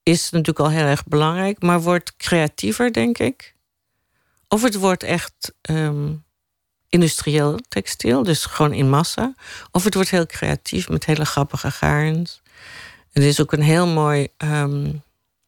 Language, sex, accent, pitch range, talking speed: Dutch, female, Dutch, 145-175 Hz, 145 wpm